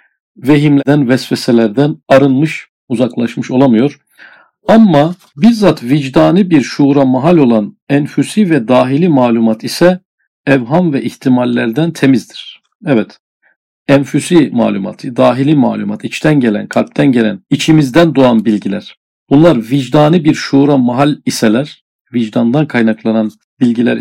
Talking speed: 105 wpm